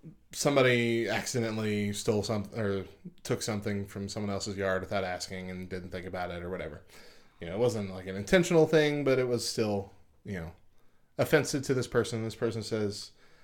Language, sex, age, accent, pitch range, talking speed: English, male, 20-39, American, 100-135 Hz, 185 wpm